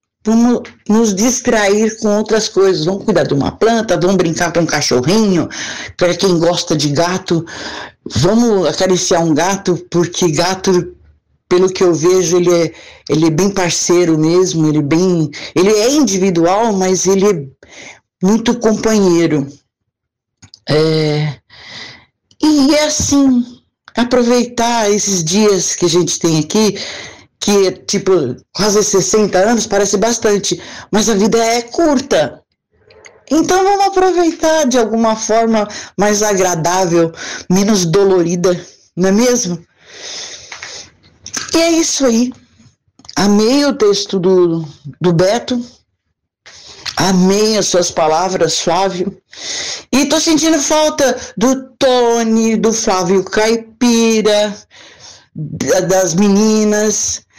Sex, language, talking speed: female, Portuguese, 115 wpm